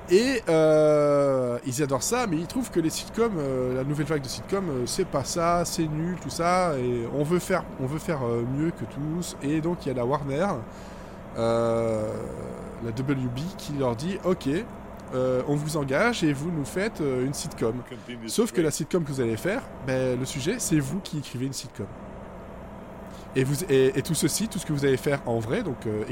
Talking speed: 220 wpm